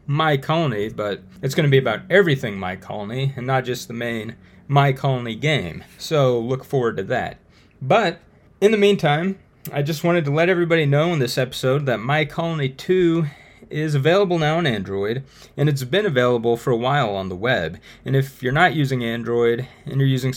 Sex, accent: male, American